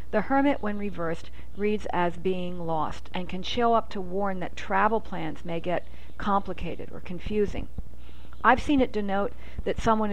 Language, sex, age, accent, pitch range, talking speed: English, female, 50-69, American, 165-220 Hz, 165 wpm